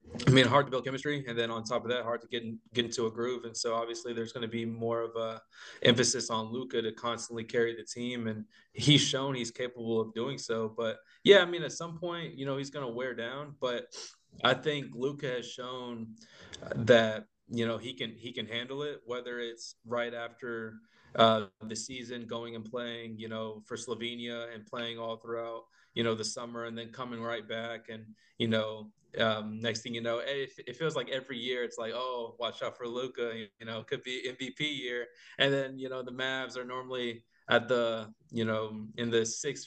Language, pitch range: English, 115-125 Hz